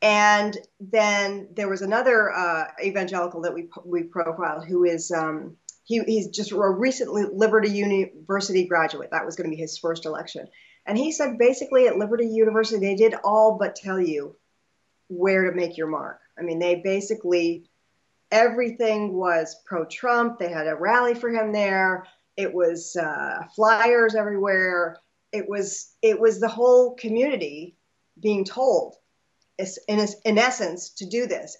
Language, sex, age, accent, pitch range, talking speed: English, female, 40-59, American, 175-225 Hz, 155 wpm